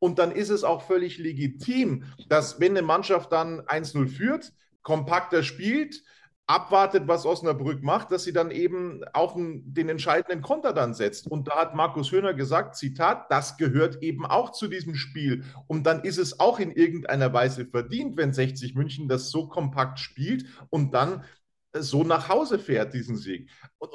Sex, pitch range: male, 135-180 Hz